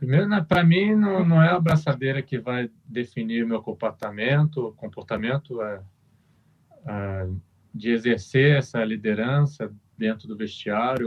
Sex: male